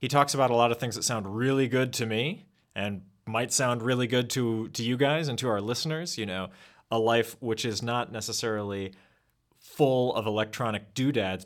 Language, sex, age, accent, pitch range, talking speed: English, male, 30-49, American, 95-135 Hz, 200 wpm